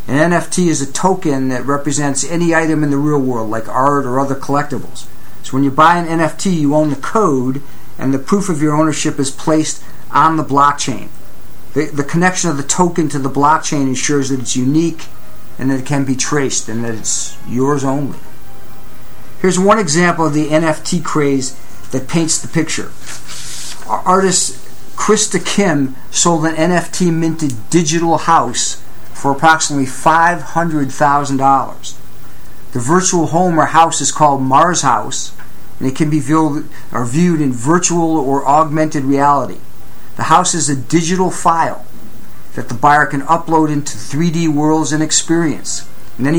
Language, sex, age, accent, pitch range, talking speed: English, male, 50-69, American, 140-170 Hz, 160 wpm